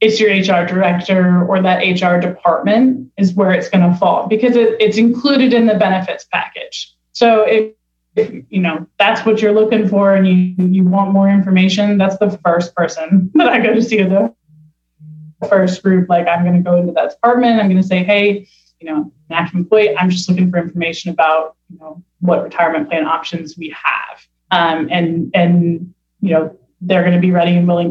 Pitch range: 170-215 Hz